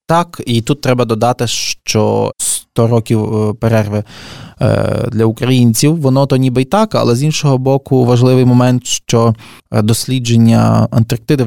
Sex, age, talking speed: male, 20-39, 130 wpm